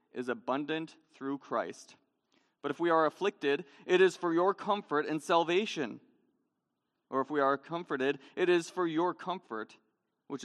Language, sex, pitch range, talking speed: English, male, 125-165 Hz, 155 wpm